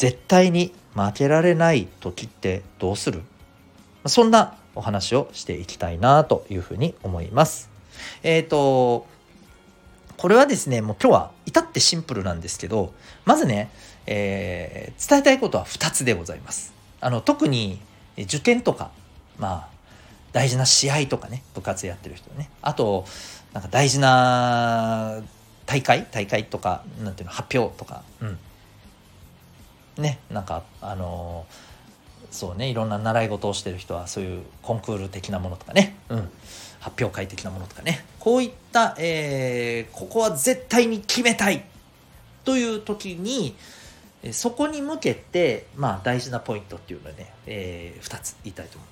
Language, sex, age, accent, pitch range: Japanese, male, 40-59, native, 95-140 Hz